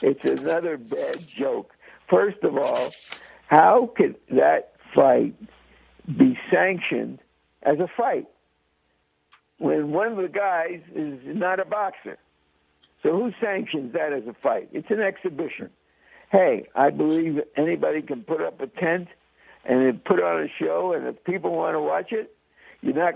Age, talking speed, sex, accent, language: 60-79, 150 wpm, male, American, English